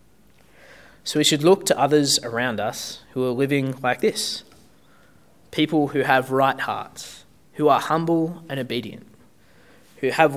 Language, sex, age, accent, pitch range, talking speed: English, male, 20-39, Australian, 130-160 Hz, 145 wpm